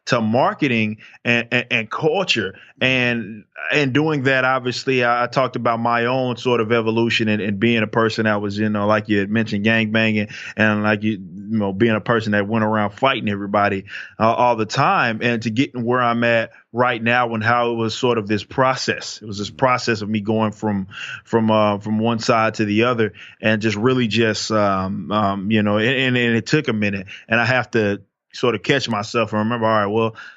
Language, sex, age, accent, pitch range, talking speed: English, male, 20-39, American, 110-125 Hz, 220 wpm